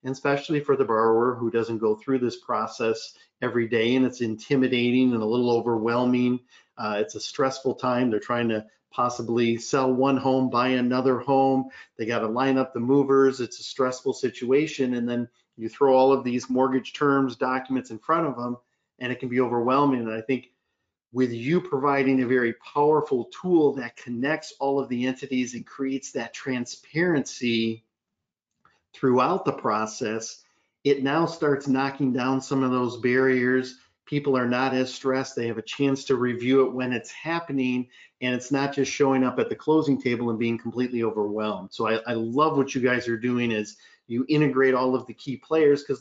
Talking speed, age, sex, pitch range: 185 wpm, 40-59, male, 120-140 Hz